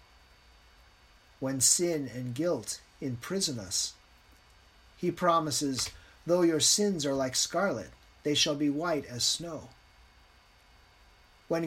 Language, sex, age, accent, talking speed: English, male, 40-59, American, 110 wpm